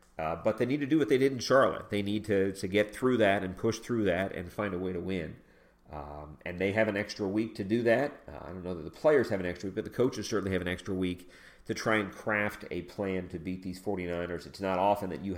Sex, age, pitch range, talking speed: male, 40-59, 90-105 Hz, 280 wpm